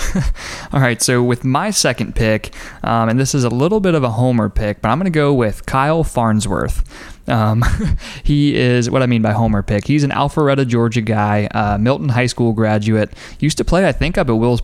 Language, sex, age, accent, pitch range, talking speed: English, male, 20-39, American, 110-135 Hz, 215 wpm